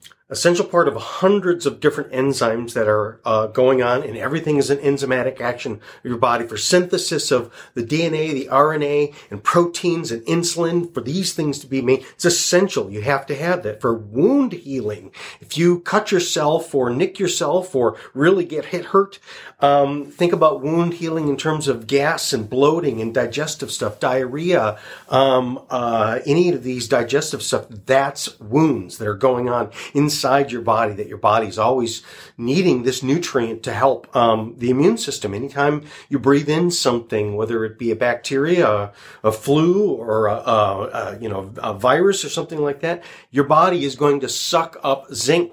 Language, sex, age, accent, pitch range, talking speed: English, male, 40-59, American, 120-160 Hz, 180 wpm